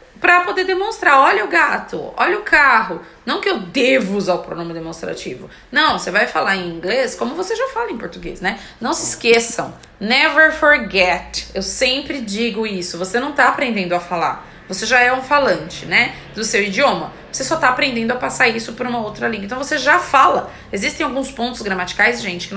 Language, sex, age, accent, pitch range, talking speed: English, female, 20-39, Brazilian, 205-310 Hz, 200 wpm